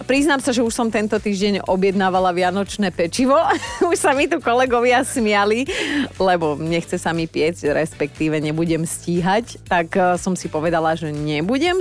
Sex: female